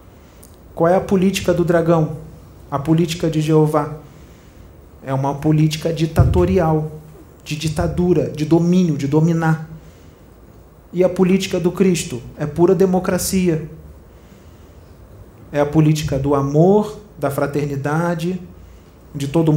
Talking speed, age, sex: 115 wpm, 40-59, male